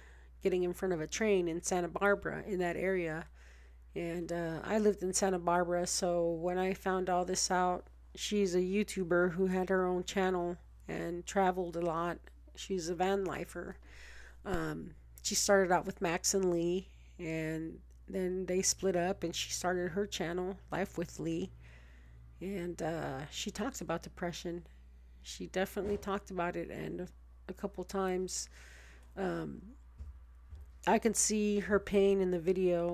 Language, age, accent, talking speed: English, 40-59, American, 155 wpm